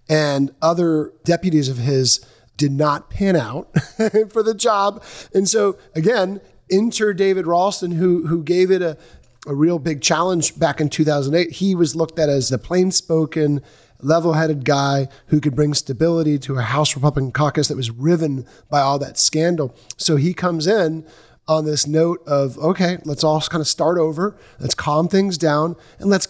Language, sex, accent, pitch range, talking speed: English, male, American, 145-175 Hz, 175 wpm